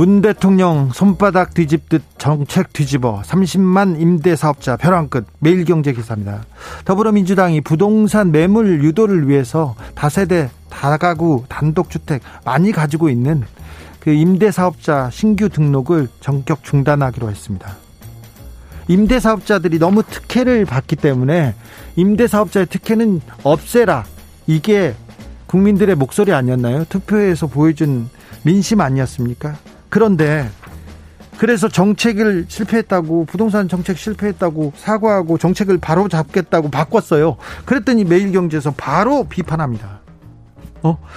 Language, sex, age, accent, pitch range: Korean, male, 40-59, native, 135-200 Hz